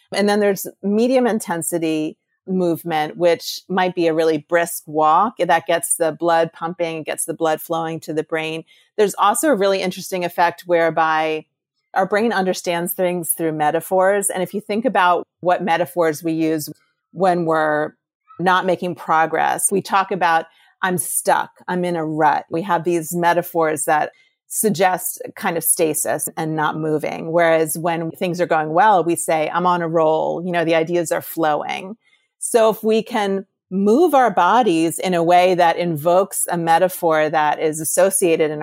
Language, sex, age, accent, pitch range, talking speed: English, female, 40-59, American, 160-185 Hz, 170 wpm